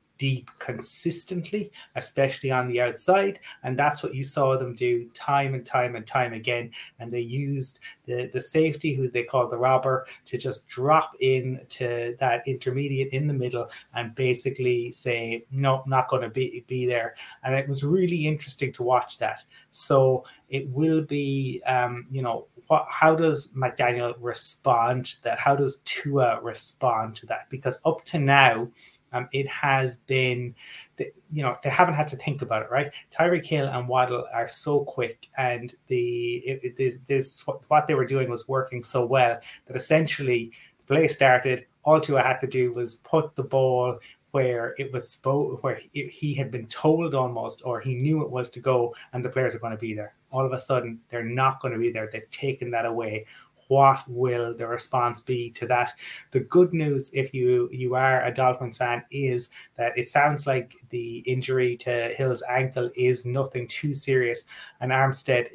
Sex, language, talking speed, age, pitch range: male, English, 185 wpm, 30-49, 120-140 Hz